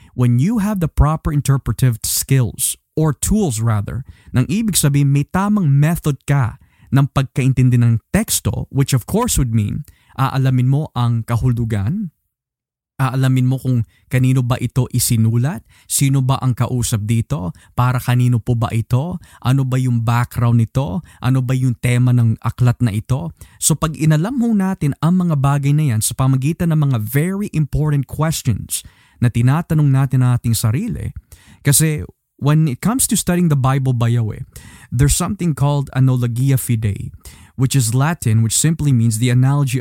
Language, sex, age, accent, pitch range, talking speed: Filipino, male, 20-39, native, 120-150 Hz, 160 wpm